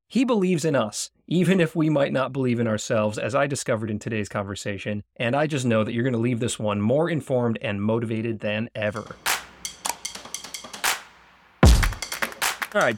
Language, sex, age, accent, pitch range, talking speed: English, male, 30-49, American, 105-145 Hz, 170 wpm